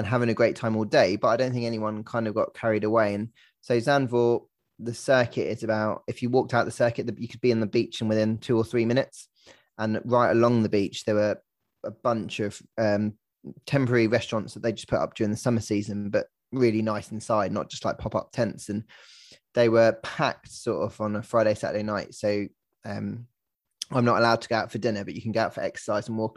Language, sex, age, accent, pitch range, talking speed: English, male, 20-39, British, 110-120 Hz, 235 wpm